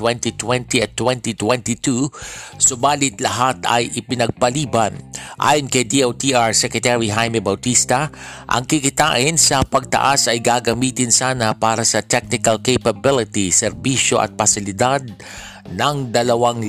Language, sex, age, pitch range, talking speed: Filipino, male, 50-69, 110-130 Hz, 105 wpm